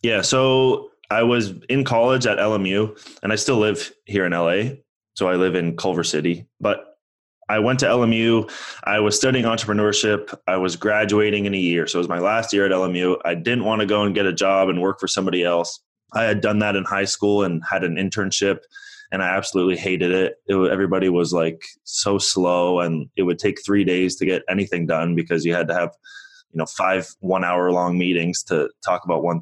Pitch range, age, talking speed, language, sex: 90-110 Hz, 20-39, 215 wpm, English, male